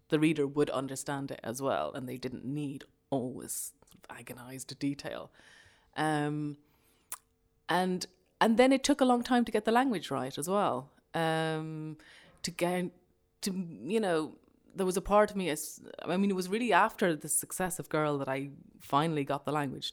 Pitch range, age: 145-185 Hz, 30-49